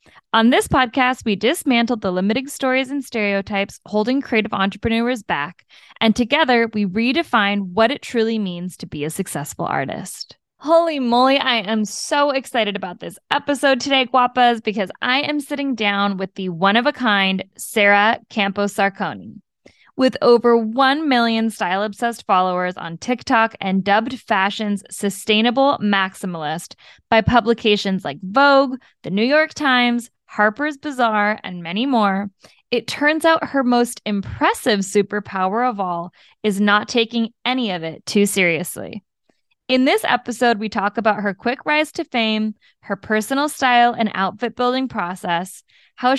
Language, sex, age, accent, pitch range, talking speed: English, female, 10-29, American, 200-255 Hz, 145 wpm